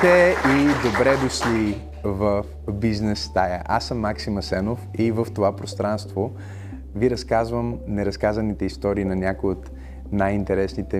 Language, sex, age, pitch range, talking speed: Bulgarian, male, 30-49, 95-110 Hz, 120 wpm